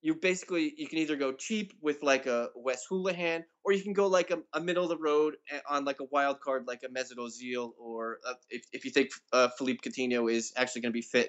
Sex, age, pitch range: male, 20-39, 115-155 Hz